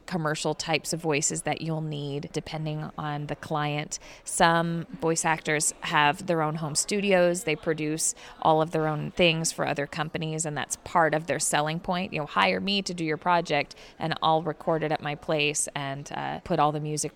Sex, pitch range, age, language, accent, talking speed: female, 155-180 Hz, 20-39, English, American, 200 wpm